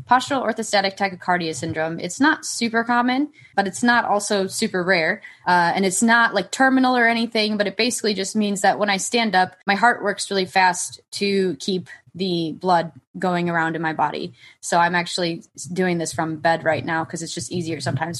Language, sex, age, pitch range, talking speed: English, female, 20-39, 175-215 Hz, 200 wpm